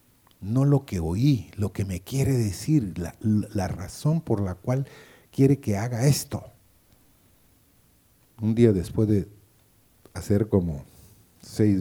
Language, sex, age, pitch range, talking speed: Spanish, male, 50-69, 95-115 Hz, 130 wpm